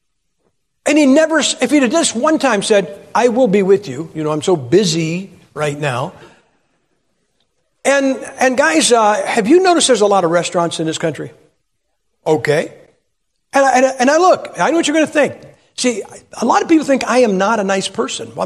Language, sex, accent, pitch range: English, male, American, 175-260 Hz